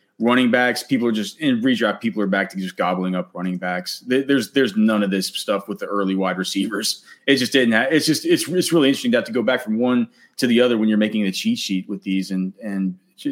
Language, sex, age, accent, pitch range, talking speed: English, male, 30-49, American, 105-135 Hz, 260 wpm